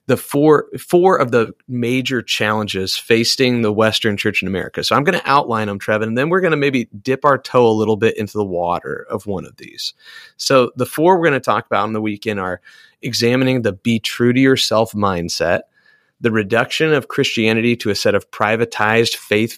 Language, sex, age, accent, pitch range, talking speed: English, male, 30-49, American, 105-135 Hz, 210 wpm